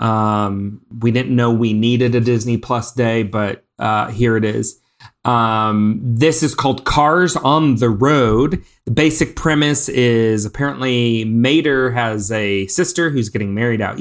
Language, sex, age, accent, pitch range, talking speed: English, male, 30-49, American, 110-140 Hz, 155 wpm